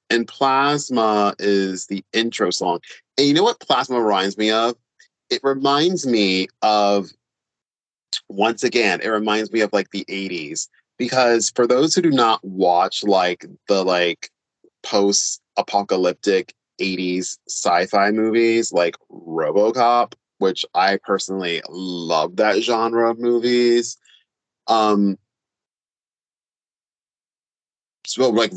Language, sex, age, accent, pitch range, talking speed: English, male, 30-49, American, 95-120 Hz, 115 wpm